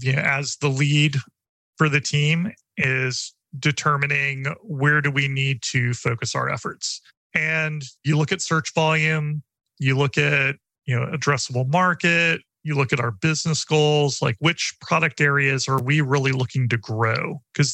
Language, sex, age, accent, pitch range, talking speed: English, male, 30-49, American, 125-150 Hz, 155 wpm